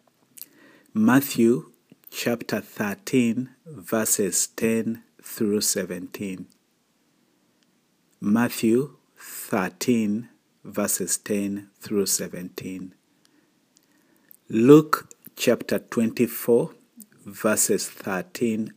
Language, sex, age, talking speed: English, male, 50-69, 60 wpm